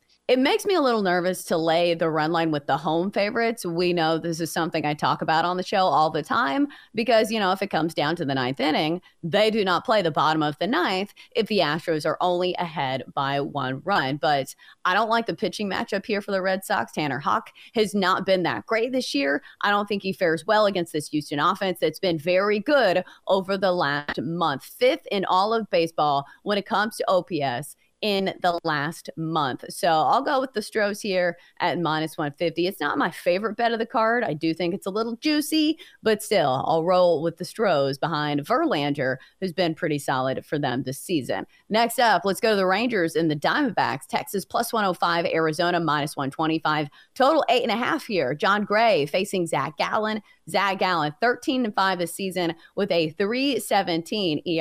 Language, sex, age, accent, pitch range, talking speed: English, female, 30-49, American, 160-210 Hz, 205 wpm